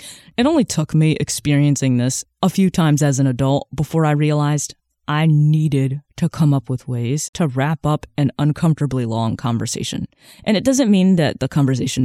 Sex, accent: female, American